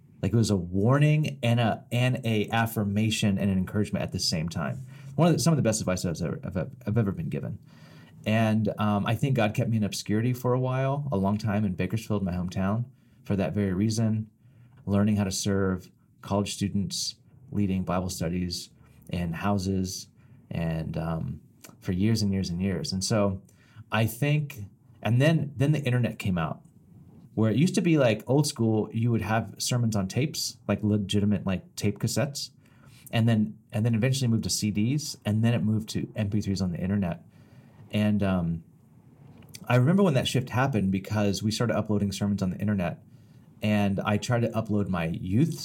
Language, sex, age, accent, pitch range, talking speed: English, male, 30-49, American, 100-125 Hz, 190 wpm